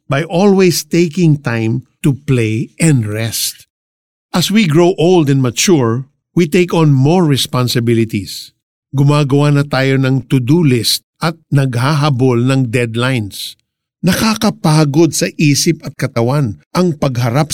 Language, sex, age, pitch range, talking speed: Filipino, male, 50-69, 120-160 Hz, 125 wpm